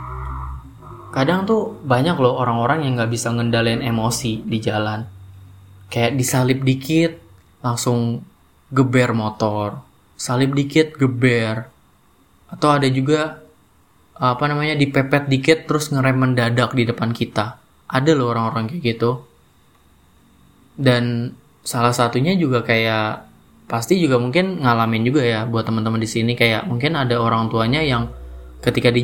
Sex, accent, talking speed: male, native, 130 wpm